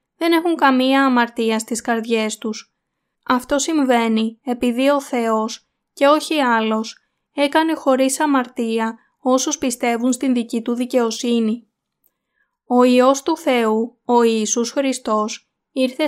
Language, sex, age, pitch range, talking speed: Greek, female, 20-39, 225-260 Hz, 120 wpm